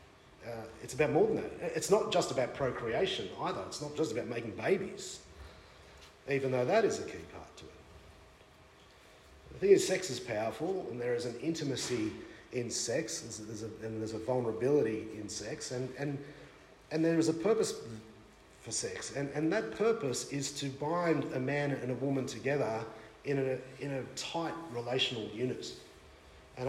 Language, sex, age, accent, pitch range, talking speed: English, male, 40-59, Australian, 110-150 Hz, 180 wpm